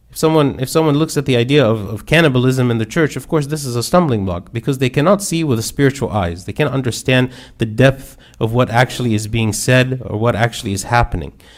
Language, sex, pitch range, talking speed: English, male, 115-140 Hz, 230 wpm